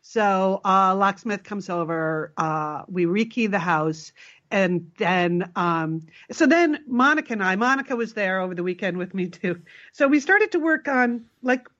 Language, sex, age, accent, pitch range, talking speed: English, female, 50-69, American, 180-260 Hz, 175 wpm